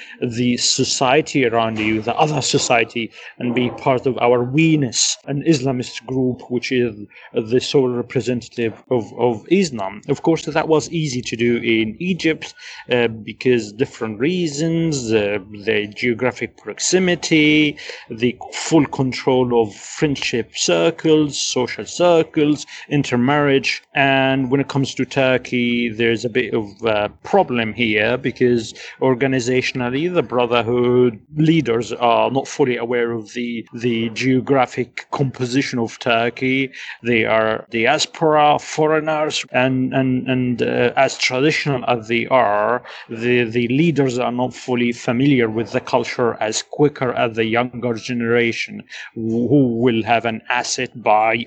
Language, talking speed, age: English, 130 wpm, 30-49